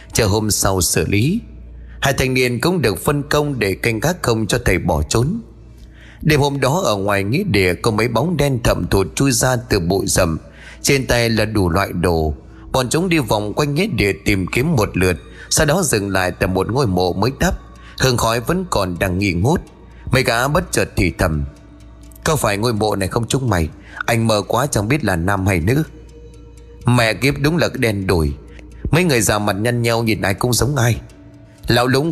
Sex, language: male, Vietnamese